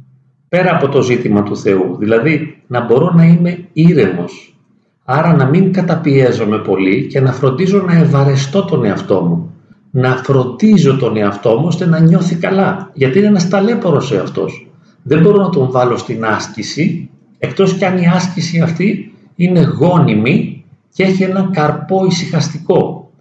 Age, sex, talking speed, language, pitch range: 40-59, male, 155 wpm, Greek, 130-185 Hz